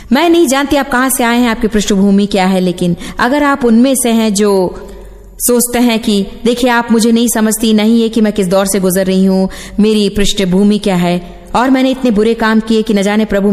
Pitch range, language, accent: 180-235 Hz, Hindi, native